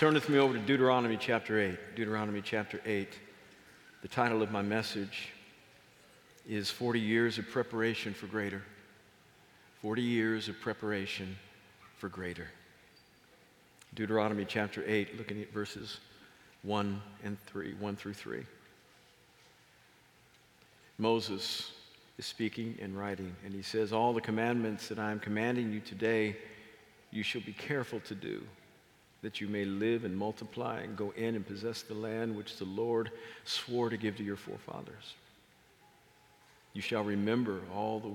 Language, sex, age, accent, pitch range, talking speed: English, male, 50-69, American, 100-115 Hz, 145 wpm